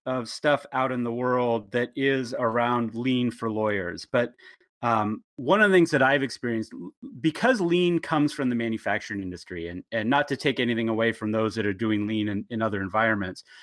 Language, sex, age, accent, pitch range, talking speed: English, male, 30-49, American, 115-140 Hz, 200 wpm